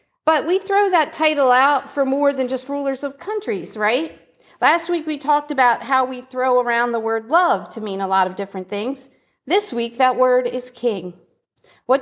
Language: English